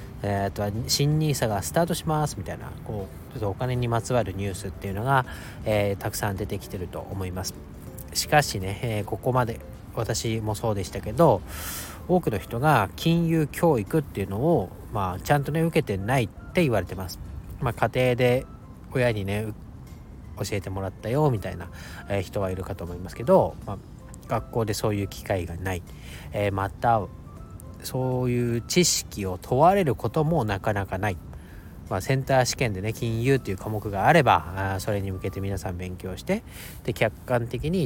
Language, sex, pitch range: Japanese, male, 95-125 Hz